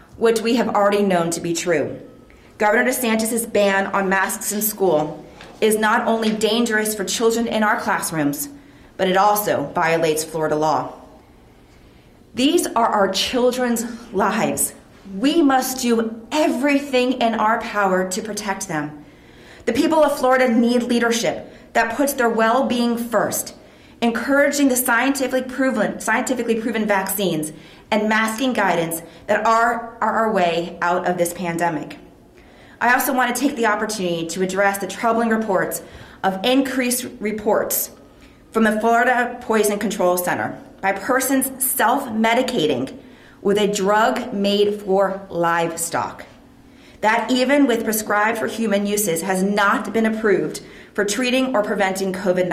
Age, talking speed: 30-49, 135 wpm